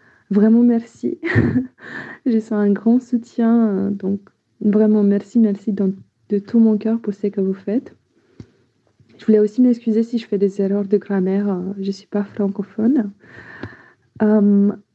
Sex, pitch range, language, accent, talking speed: female, 195-225 Hz, French, French, 150 wpm